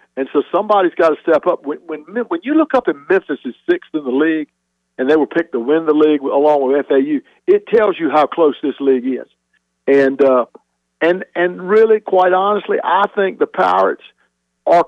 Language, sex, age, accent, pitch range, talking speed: English, male, 60-79, American, 135-210 Hz, 205 wpm